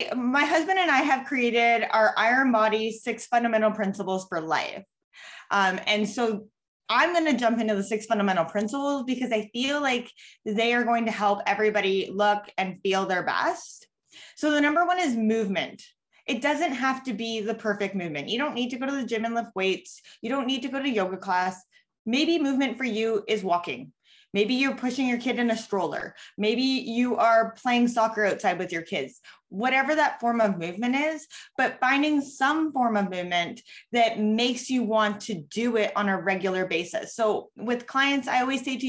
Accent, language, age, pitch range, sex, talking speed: American, English, 20-39, 210-275 Hz, female, 195 wpm